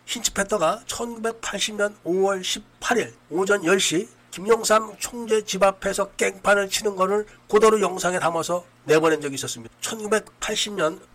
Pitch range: 165-210 Hz